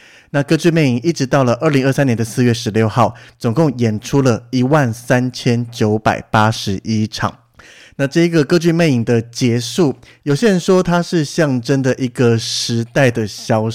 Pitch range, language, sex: 115-150 Hz, Chinese, male